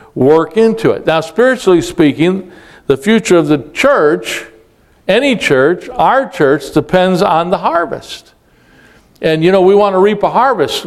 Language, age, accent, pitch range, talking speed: English, 60-79, American, 130-175 Hz, 155 wpm